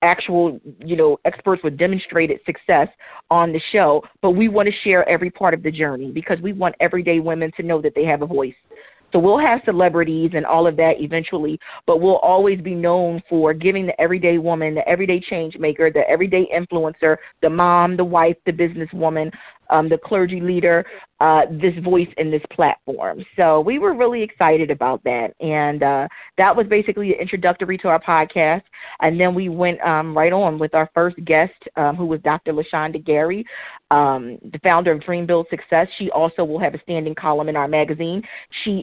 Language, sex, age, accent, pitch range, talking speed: English, female, 40-59, American, 155-185 Hz, 195 wpm